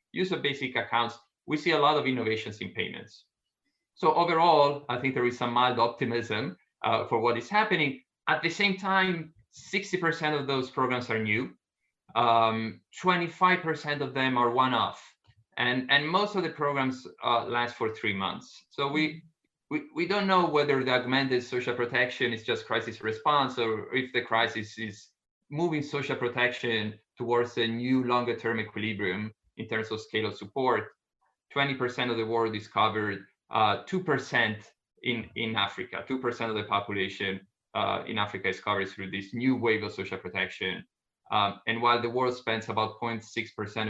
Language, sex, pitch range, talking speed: English, male, 110-135 Hz, 170 wpm